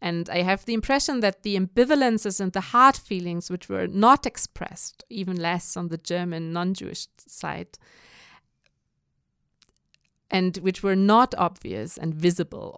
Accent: German